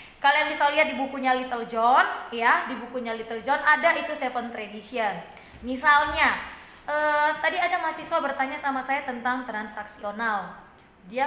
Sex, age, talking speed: female, 20-39, 145 wpm